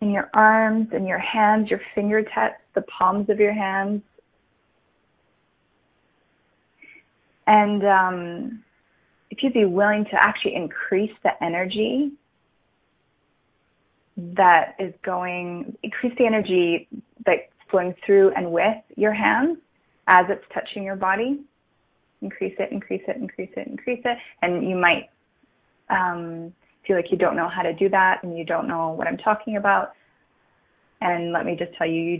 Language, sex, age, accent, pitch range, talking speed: English, female, 20-39, American, 180-240 Hz, 145 wpm